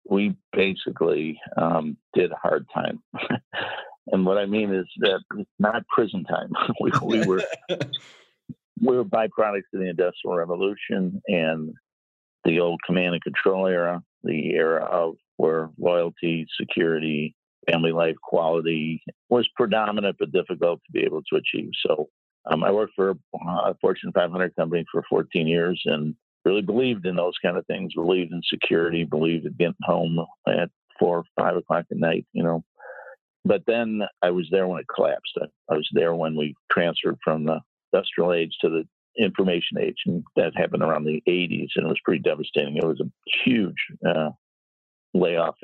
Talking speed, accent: 170 wpm, American